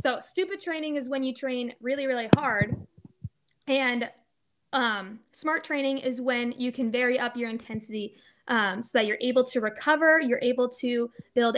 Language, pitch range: English, 235-280 Hz